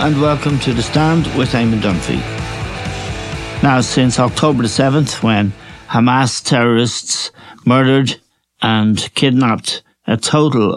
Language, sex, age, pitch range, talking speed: English, male, 60-79, 105-125 Hz, 115 wpm